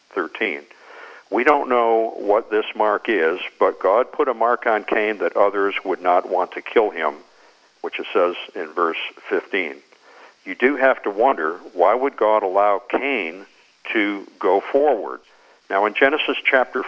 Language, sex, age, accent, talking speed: English, male, 50-69, American, 165 wpm